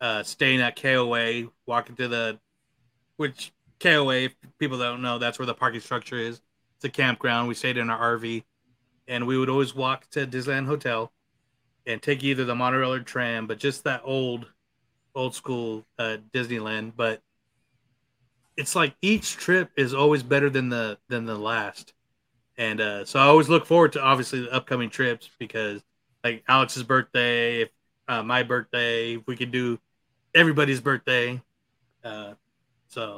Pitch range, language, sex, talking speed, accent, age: 120-135 Hz, English, male, 165 wpm, American, 30-49